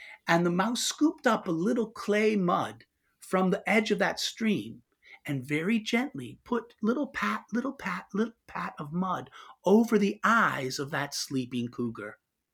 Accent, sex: American, male